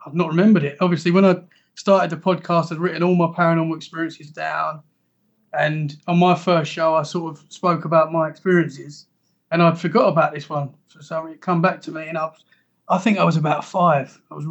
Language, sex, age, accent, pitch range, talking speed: English, male, 30-49, British, 160-185 Hz, 220 wpm